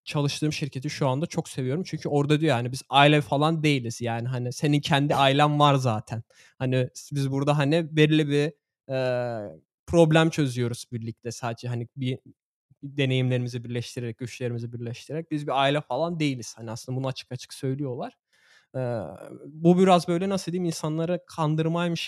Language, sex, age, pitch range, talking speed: Turkish, male, 20-39, 125-150 Hz, 160 wpm